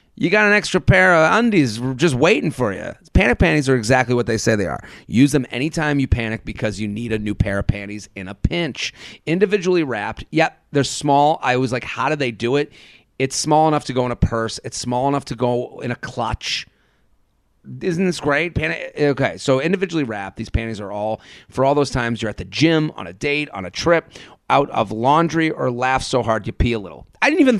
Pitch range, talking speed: 110-145 Hz, 225 wpm